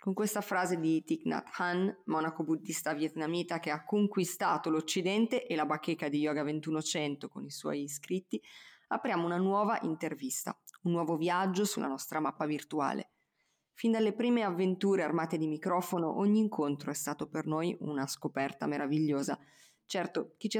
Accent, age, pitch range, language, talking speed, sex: native, 20-39, 155-195 Hz, Italian, 155 wpm, female